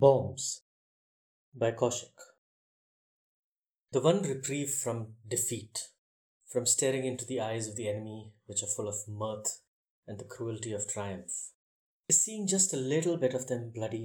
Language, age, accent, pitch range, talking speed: English, 20-39, Indian, 110-135 Hz, 150 wpm